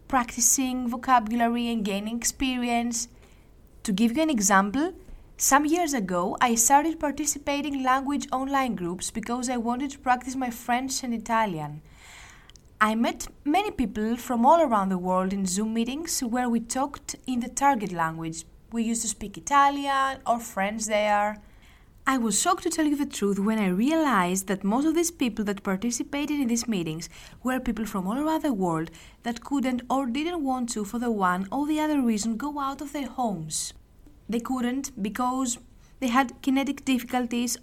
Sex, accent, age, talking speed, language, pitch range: female, Spanish, 20-39, 175 wpm, Greek, 215-280 Hz